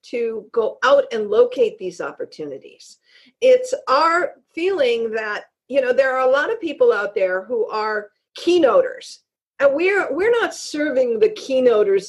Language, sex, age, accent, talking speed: English, female, 50-69, American, 155 wpm